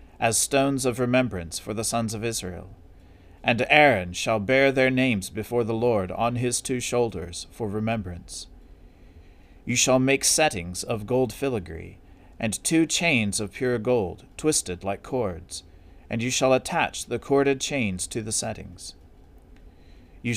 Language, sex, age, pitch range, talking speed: English, male, 40-59, 90-125 Hz, 150 wpm